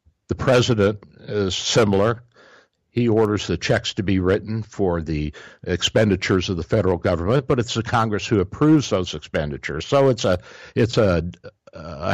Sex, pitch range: male, 90-120 Hz